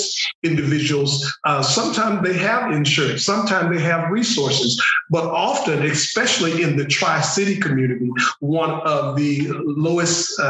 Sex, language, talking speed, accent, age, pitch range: male, English, 120 wpm, American, 50-69, 145-170 Hz